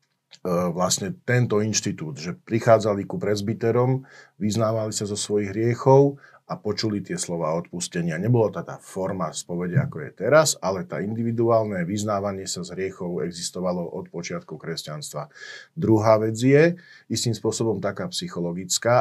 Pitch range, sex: 100-130 Hz, male